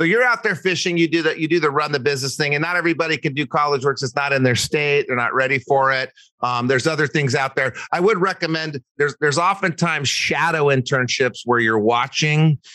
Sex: male